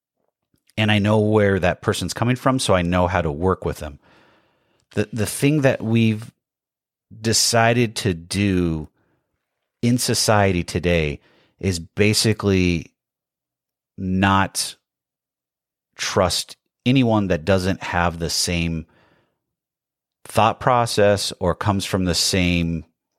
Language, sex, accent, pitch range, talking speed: English, male, American, 90-115 Hz, 115 wpm